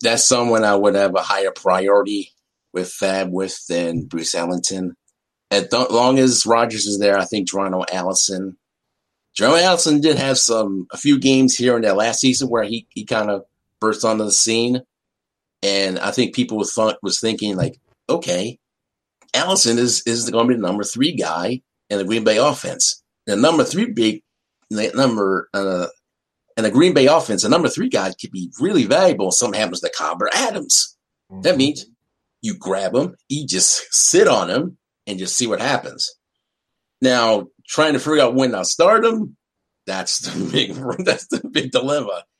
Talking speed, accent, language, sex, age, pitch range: 180 wpm, American, English, male, 50-69, 100-130 Hz